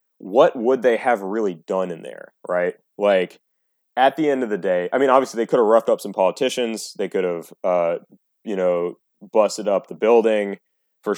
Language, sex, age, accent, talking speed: English, male, 30-49, American, 200 wpm